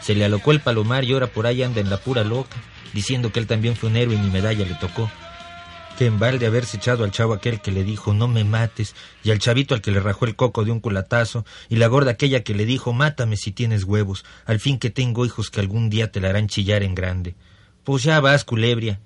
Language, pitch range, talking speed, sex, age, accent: Spanish, 100-125 Hz, 255 wpm, male, 40-59, Mexican